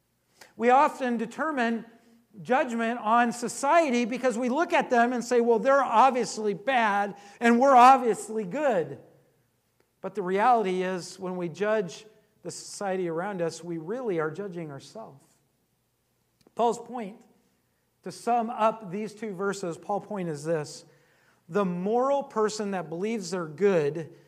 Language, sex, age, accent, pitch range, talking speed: English, male, 50-69, American, 185-235 Hz, 140 wpm